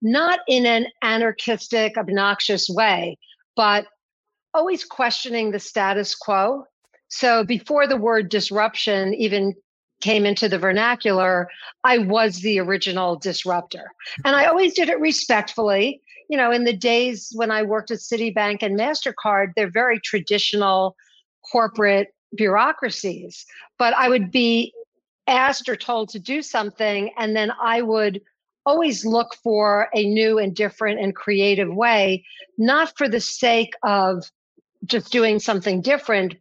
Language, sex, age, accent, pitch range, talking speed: English, female, 50-69, American, 205-240 Hz, 135 wpm